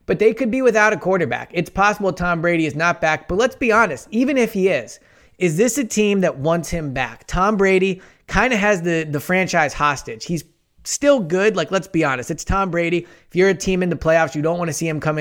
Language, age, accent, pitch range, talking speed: English, 20-39, American, 145-185 Hz, 250 wpm